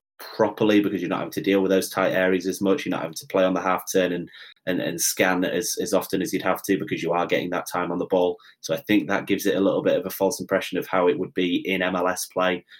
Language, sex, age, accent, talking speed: English, male, 20-39, British, 305 wpm